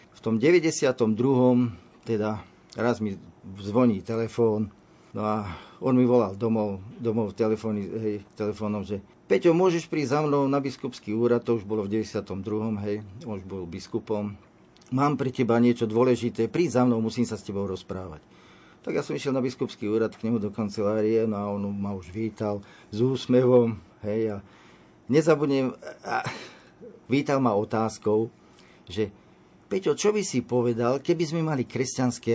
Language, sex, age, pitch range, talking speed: Slovak, male, 40-59, 105-120 Hz, 160 wpm